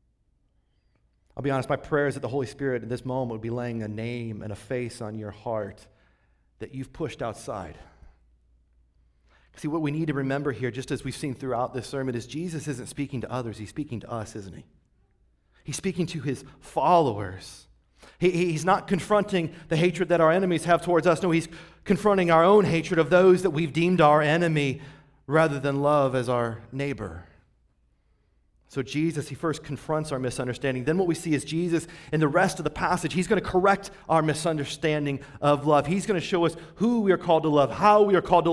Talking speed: 205 wpm